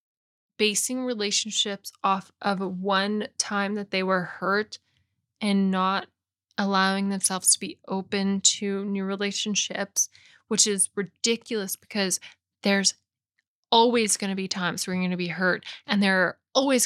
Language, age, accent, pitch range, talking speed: English, 10-29, American, 185-215 Hz, 140 wpm